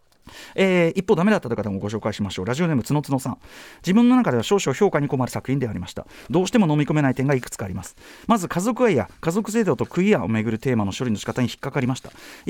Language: Japanese